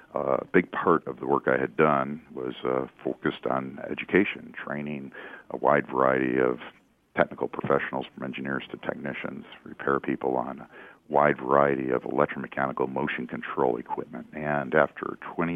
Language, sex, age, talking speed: English, male, 50-69, 150 wpm